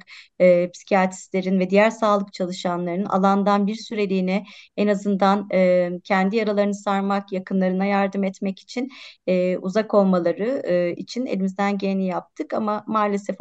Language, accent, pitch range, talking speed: Turkish, native, 195-210 Hz, 130 wpm